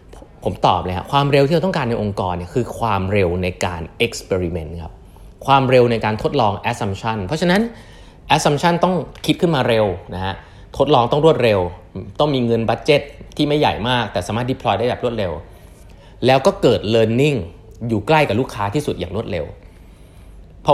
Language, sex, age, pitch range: Thai, male, 20-39, 95-145 Hz